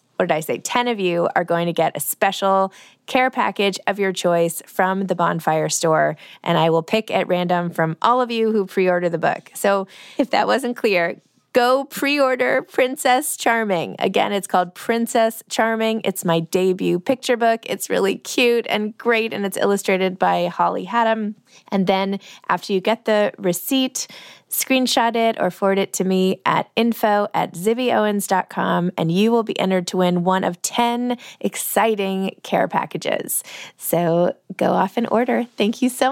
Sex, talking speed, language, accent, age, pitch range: female, 175 wpm, English, American, 20-39, 185-250 Hz